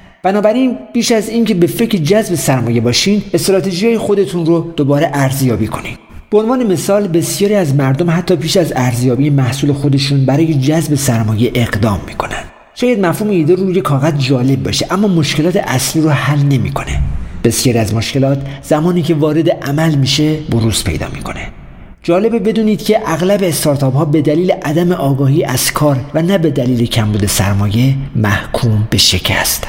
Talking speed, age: 160 wpm, 50-69